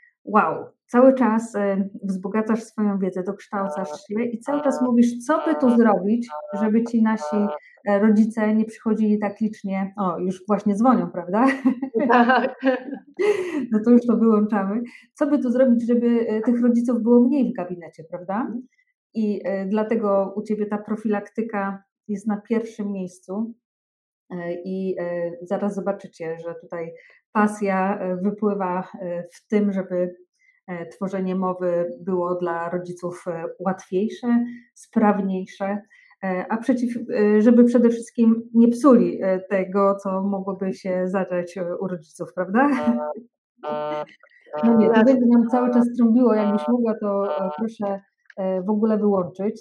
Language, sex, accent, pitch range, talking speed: Polish, female, native, 190-235 Hz, 125 wpm